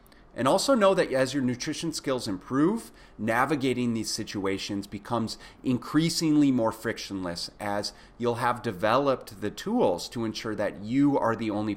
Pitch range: 95-120 Hz